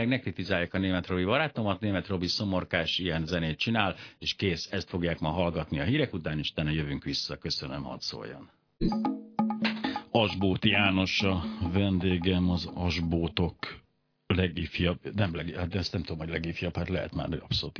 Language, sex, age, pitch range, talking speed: Hungarian, male, 60-79, 85-110 Hz, 160 wpm